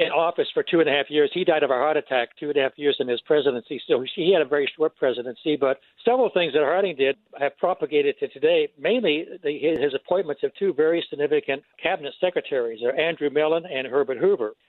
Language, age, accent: English, 60-79, American